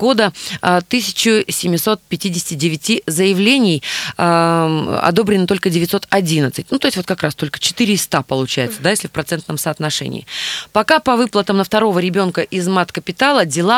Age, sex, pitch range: 20-39, female, 165-220 Hz